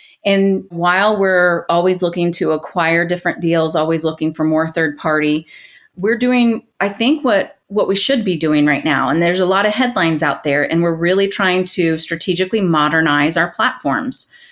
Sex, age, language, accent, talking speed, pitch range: female, 30-49, English, American, 180 wpm, 165-195 Hz